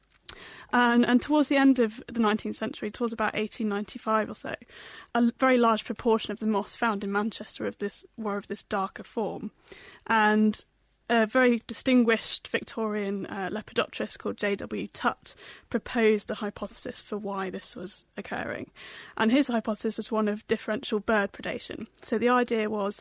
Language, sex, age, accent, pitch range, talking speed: English, female, 30-49, British, 210-235 Hz, 165 wpm